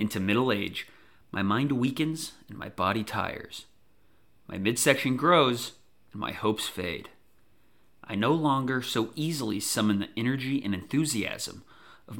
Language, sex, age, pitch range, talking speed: English, male, 30-49, 100-135 Hz, 140 wpm